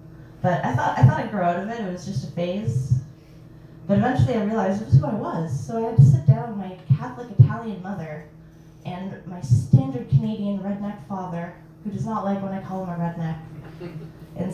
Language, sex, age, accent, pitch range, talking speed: English, female, 10-29, American, 145-175 Hz, 210 wpm